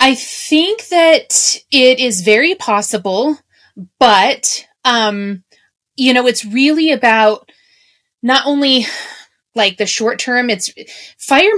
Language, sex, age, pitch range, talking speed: English, female, 30-49, 190-250 Hz, 115 wpm